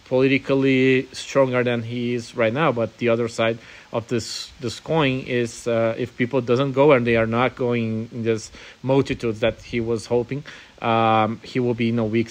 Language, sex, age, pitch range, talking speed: English, male, 30-49, 110-130 Hz, 195 wpm